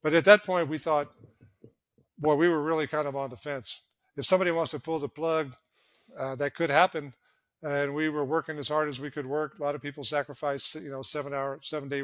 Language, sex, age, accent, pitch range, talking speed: English, male, 50-69, American, 130-150 Hz, 220 wpm